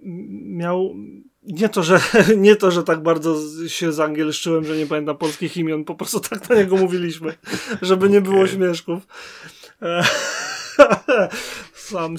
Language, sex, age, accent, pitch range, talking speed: Polish, male, 30-49, native, 155-195 Hz, 140 wpm